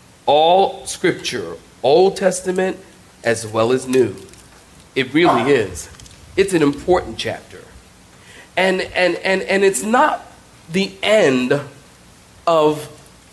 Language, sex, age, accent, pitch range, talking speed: English, male, 40-59, American, 145-200 Hz, 110 wpm